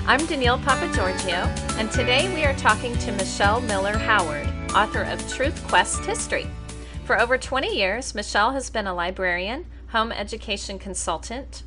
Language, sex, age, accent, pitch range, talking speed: English, female, 30-49, American, 185-240 Hz, 150 wpm